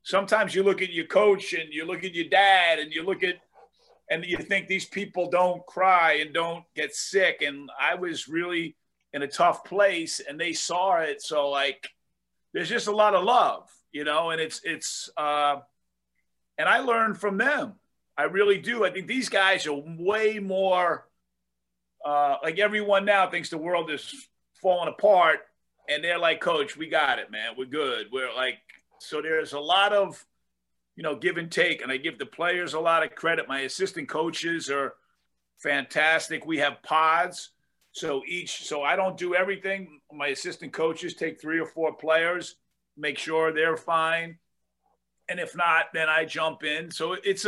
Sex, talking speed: male, 185 wpm